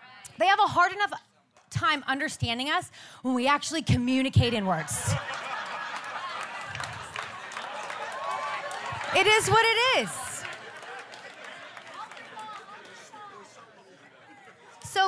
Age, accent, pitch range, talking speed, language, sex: 30-49, American, 240-345 Hz, 80 wpm, English, female